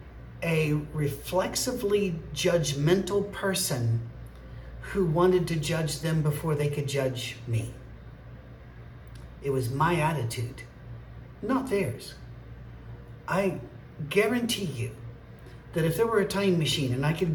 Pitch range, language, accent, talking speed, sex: 125-175 Hz, English, American, 115 wpm, male